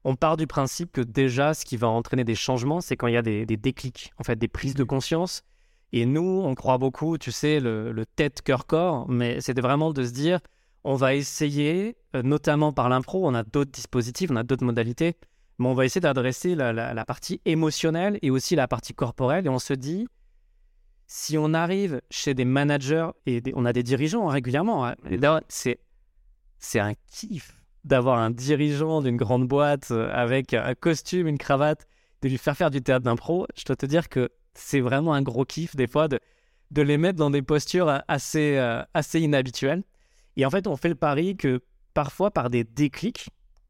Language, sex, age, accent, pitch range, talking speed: French, male, 20-39, French, 125-155 Hz, 200 wpm